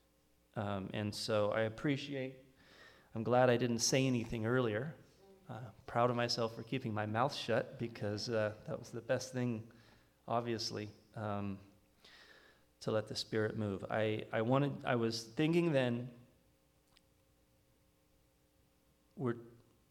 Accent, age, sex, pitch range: American, 30-49, male, 105-125 Hz